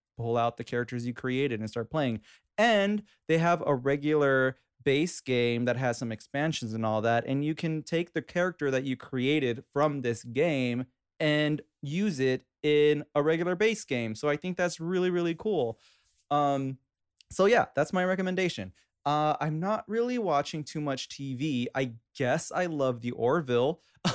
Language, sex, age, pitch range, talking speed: English, male, 20-39, 120-160 Hz, 175 wpm